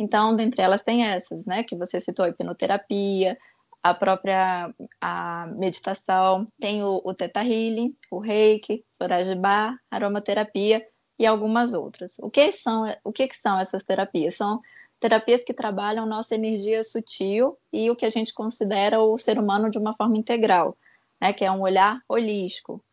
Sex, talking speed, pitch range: female, 160 wpm, 190-225 Hz